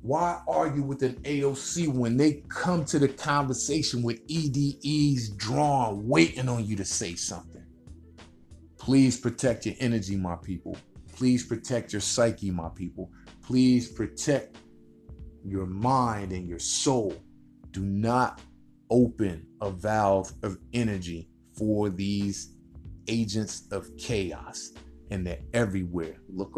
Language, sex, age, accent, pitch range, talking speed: English, male, 30-49, American, 90-120 Hz, 125 wpm